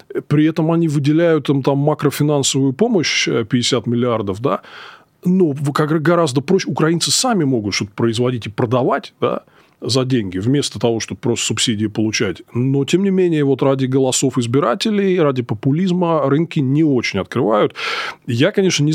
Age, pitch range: 20-39, 125-155 Hz